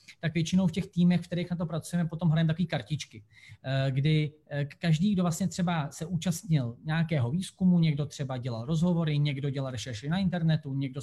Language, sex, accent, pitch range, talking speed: English, male, Czech, 145-175 Hz, 180 wpm